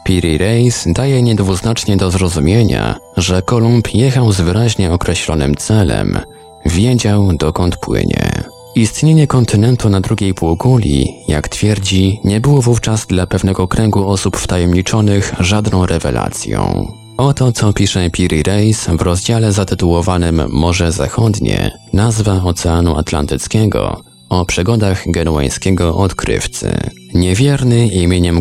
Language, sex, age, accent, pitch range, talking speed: Polish, male, 20-39, native, 90-115 Hz, 115 wpm